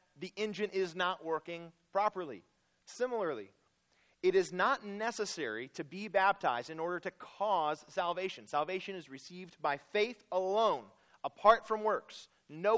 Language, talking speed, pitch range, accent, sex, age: English, 135 wpm, 155-205 Hz, American, male, 30-49